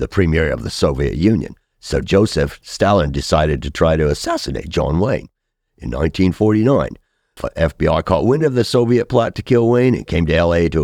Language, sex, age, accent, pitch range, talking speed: English, male, 60-79, American, 75-100 Hz, 190 wpm